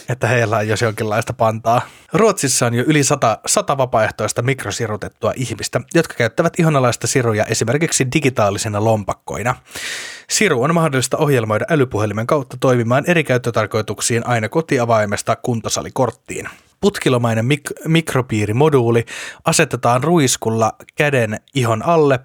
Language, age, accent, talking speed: Finnish, 30-49, native, 110 wpm